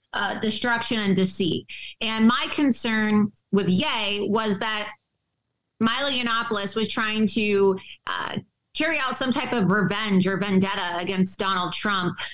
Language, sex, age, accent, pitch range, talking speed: English, female, 20-39, American, 190-220 Hz, 135 wpm